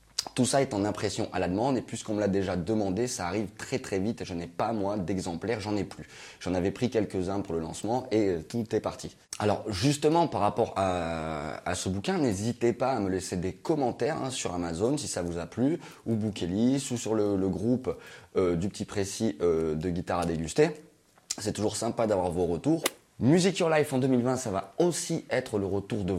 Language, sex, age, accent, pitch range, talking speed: French, male, 30-49, French, 90-120 Hz, 220 wpm